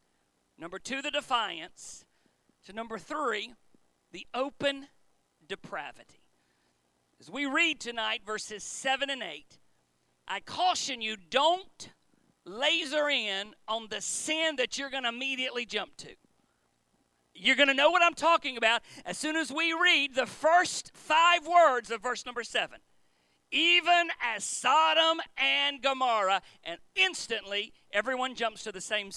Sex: male